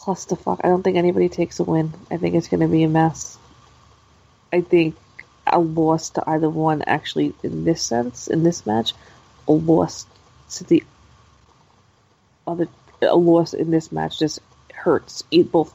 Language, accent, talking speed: English, American, 175 wpm